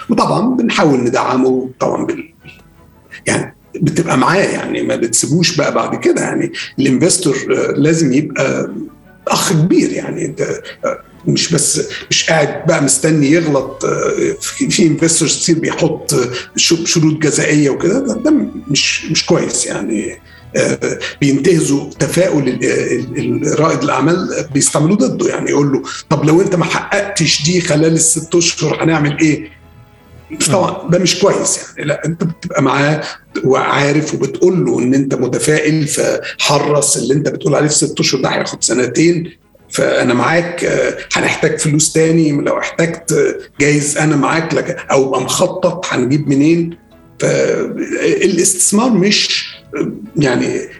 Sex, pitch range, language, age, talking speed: male, 145-190 Hz, Arabic, 50-69, 125 wpm